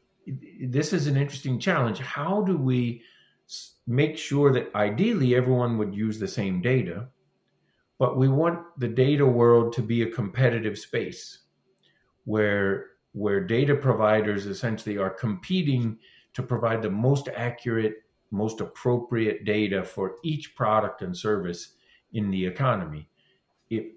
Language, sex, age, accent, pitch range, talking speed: English, male, 50-69, American, 105-135 Hz, 135 wpm